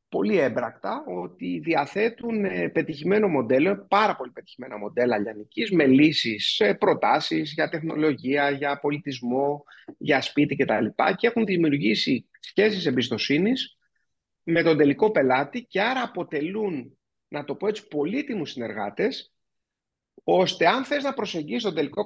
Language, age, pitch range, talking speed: Greek, 30-49, 130-200 Hz, 120 wpm